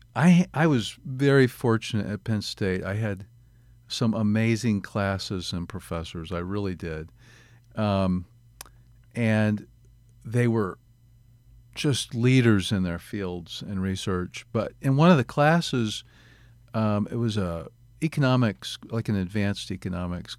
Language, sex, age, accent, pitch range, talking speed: English, male, 50-69, American, 95-120 Hz, 130 wpm